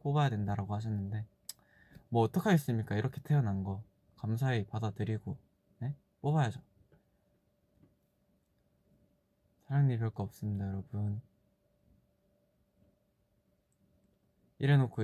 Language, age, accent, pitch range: Korean, 20-39, native, 105-135 Hz